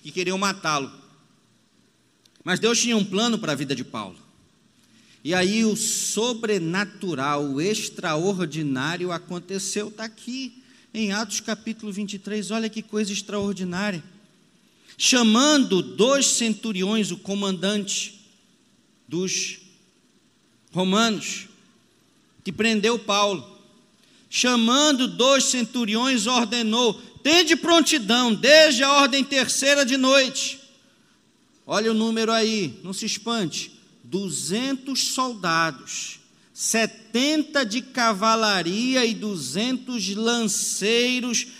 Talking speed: 95 wpm